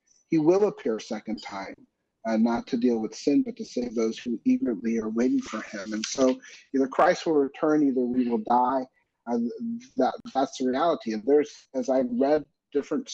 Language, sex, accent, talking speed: English, male, American, 195 wpm